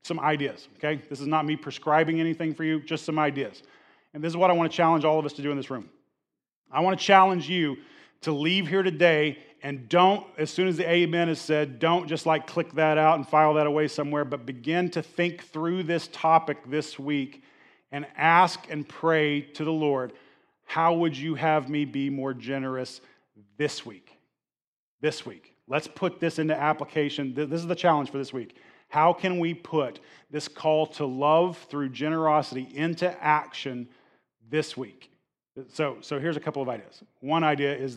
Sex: male